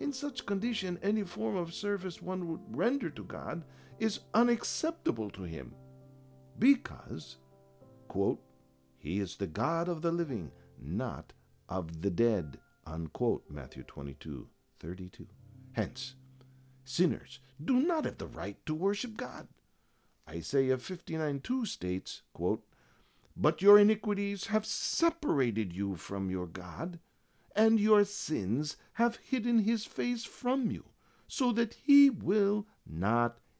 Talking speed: 125 wpm